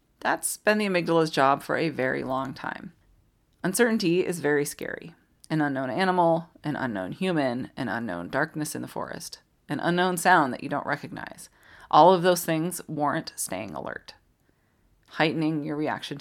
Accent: American